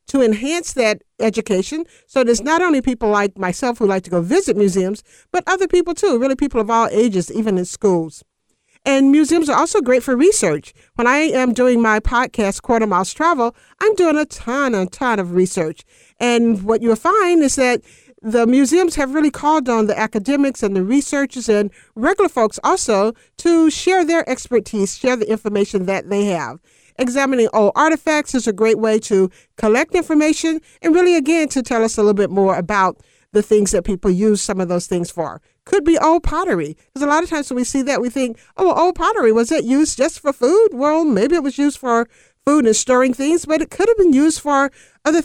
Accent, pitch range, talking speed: American, 210-305 Hz, 210 wpm